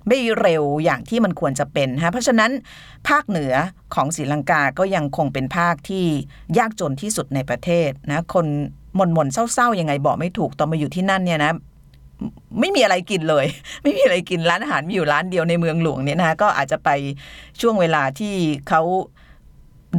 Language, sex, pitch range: Thai, female, 145-190 Hz